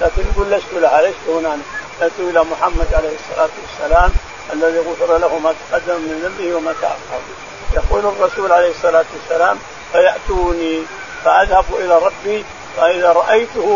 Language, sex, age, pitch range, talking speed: Arabic, male, 50-69, 170-215 Hz, 135 wpm